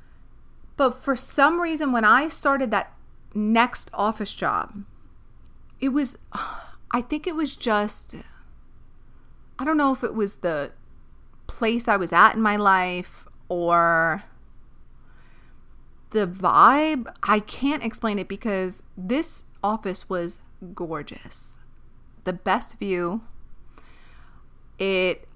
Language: English